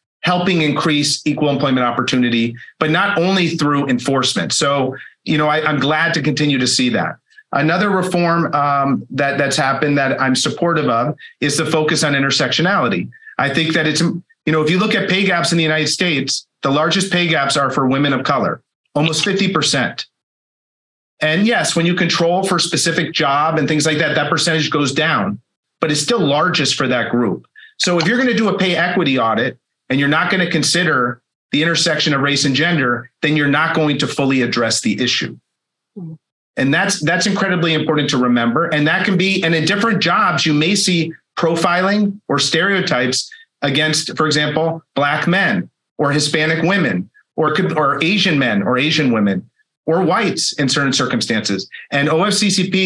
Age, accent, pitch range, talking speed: 40-59, American, 140-175 Hz, 180 wpm